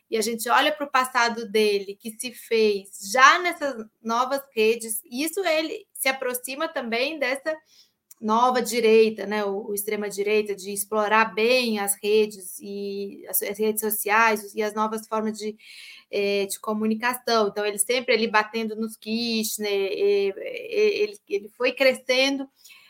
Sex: female